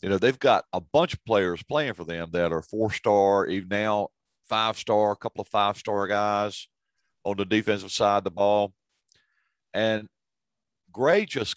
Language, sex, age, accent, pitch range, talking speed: English, male, 50-69, American, 85-105 Hz, 165 wpm